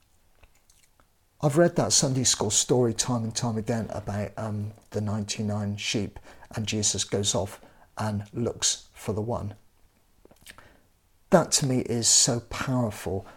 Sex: male